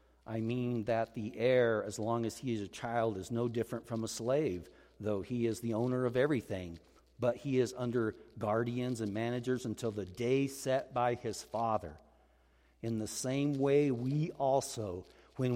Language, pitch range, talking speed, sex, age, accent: English, 115-145 Hz, 175 wpm, male, 50-69, American